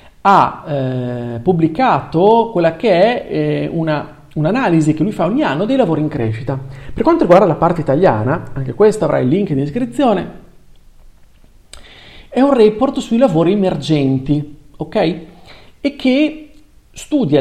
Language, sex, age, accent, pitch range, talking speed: Italian, male, 40-59, native, 135-205 Hz, 140 wpm